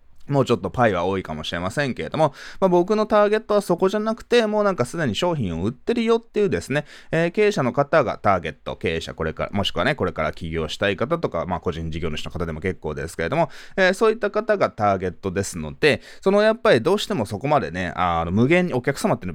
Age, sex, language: 20-39, male, Japanese